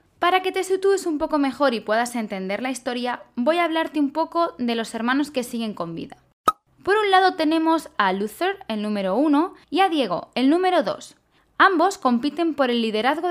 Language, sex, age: Spanish, female, 10-29